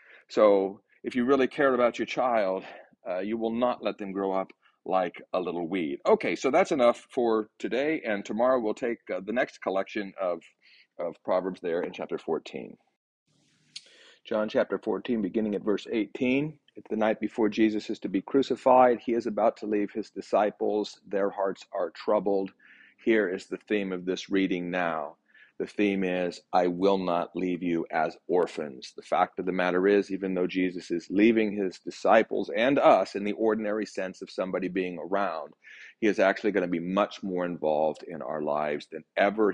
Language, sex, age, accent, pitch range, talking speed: English, male, 40-59, American, 90-115 Hz, 185 wpm